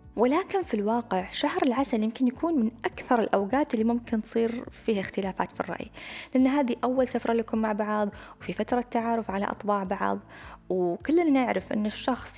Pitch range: 200-260 Hz